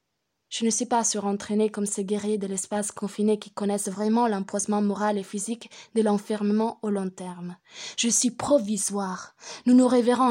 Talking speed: 170 wpm